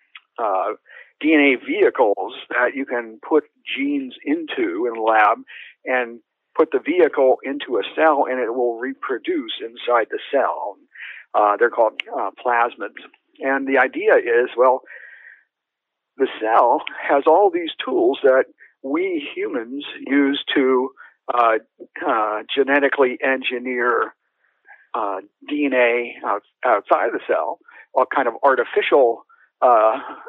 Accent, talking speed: American, 125 wpm